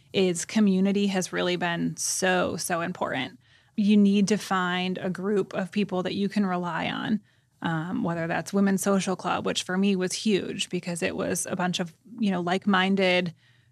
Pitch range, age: 180-200 Hz, 20-39